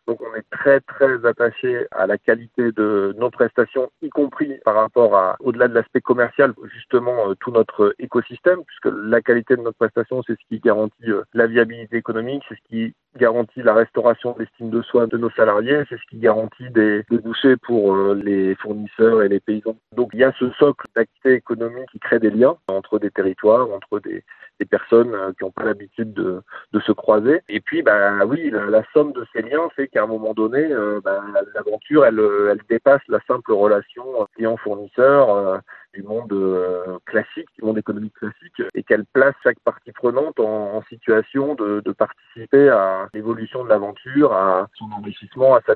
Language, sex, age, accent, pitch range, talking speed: French, male, 40-59, French, 105-125 Hz, 190 wpm